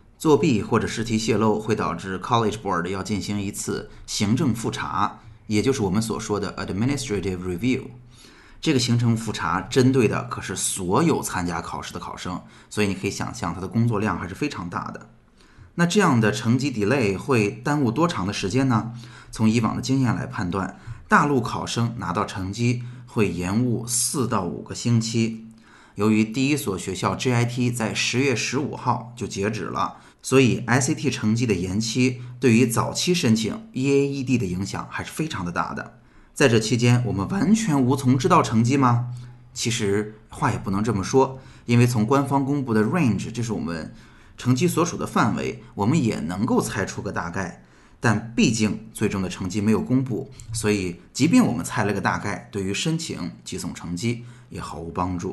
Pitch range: 100-125 Hz